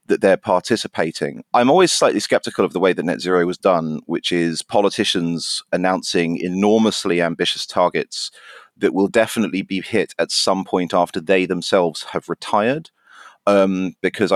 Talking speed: 155 wpm